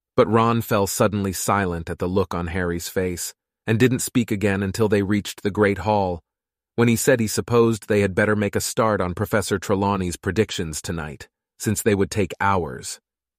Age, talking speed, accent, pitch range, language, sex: 30-49, 190 wpm, American, 95-115 Hz, English, male